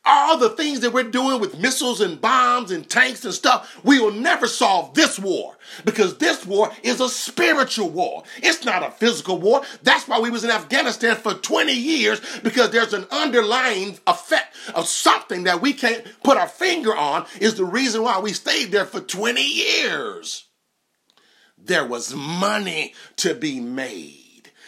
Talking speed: 175 wpm